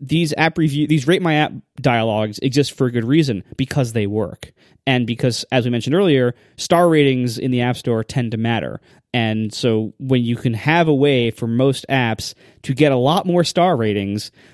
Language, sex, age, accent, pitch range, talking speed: English, male, 20-39, American, 120-160 Hz, 200 wpm